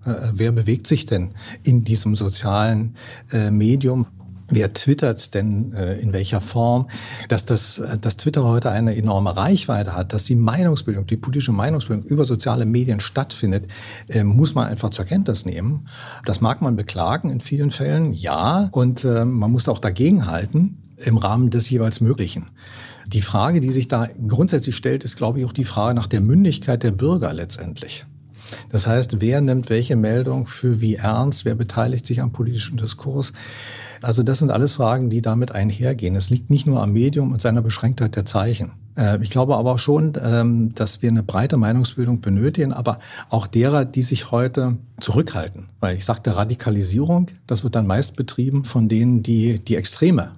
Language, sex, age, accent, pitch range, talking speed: German, male, 40-59, German, 110-130 Hz, 170 wpm